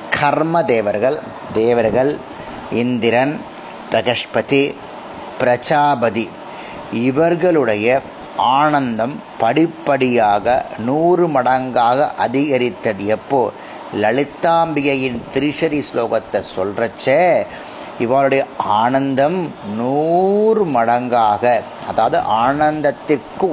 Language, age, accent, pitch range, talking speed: Tamil, 30-49, native, 120-150 Hz, 60 wpm